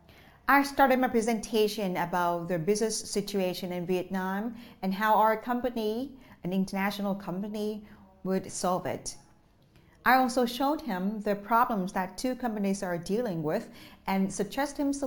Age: 40-59